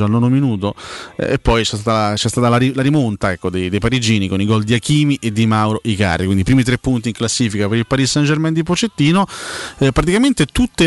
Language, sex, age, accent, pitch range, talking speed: Italian, male, 30-49, native, 105-130 Hz, 245 wpm